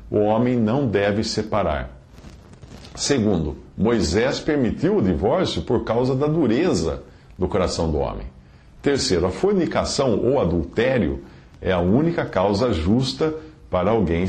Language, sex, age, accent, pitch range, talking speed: English, male, 50-69, Brazilian, 90-125 Hz, 125 wpm